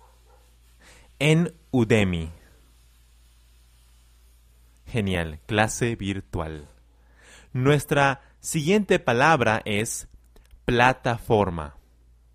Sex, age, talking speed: male, 30-49, 50 wpm